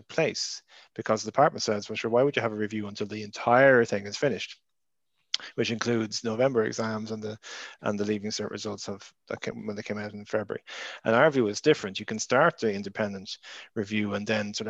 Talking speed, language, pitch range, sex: 215 wpm, English, 105-115 Hz, male